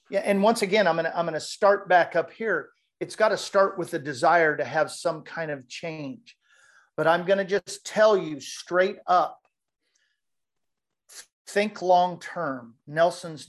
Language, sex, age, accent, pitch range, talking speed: English, male, 50-69, American, 150-190 Hz, 180 wpm